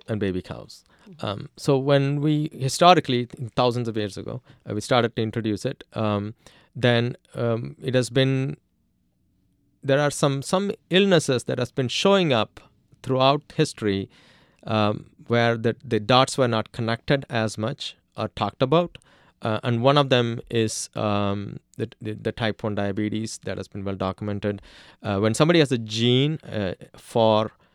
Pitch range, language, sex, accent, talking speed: 100-130 Hz, English, male, Indian, 160 wpm